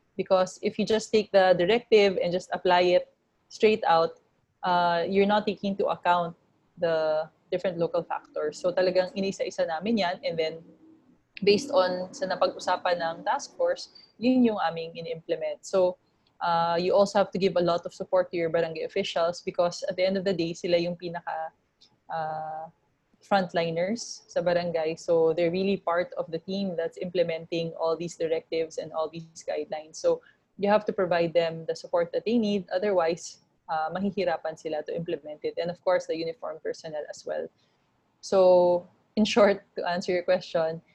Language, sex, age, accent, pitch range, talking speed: English, female, 20-39, Filipino, 165-200 Hz, 175 wpm